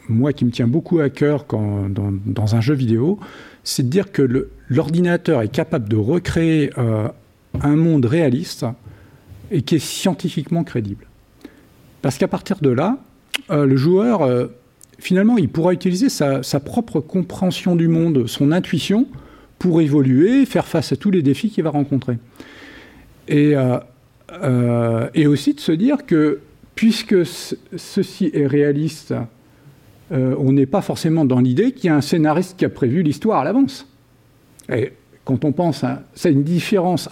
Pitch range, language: 125-175 Hz, French